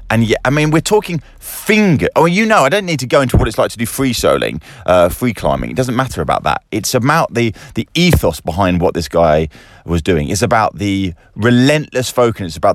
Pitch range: 95-145 Hz